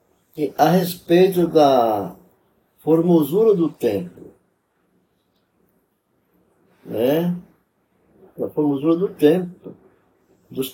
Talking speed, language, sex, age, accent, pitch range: 65 wpm, Portuguese, male, 60-79, Brazilian, 130-175 Hz